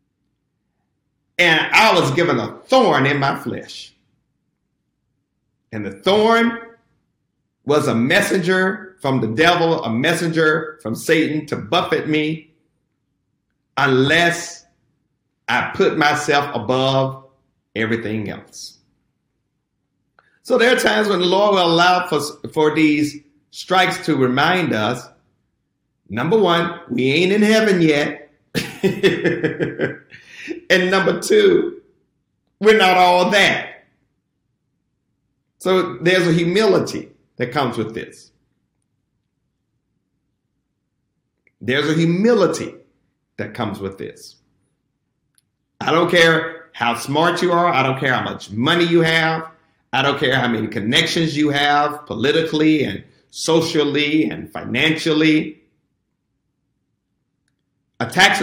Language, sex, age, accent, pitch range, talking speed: English, male, 50-69, American, 135-170 Hz, 110 wpm